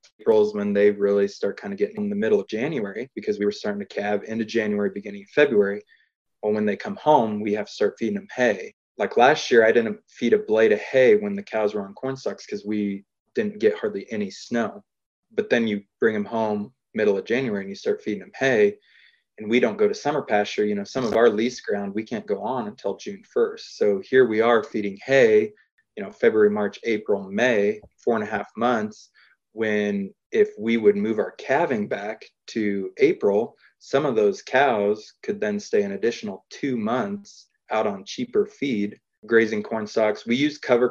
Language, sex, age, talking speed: English, male, 20-39, 210 wpm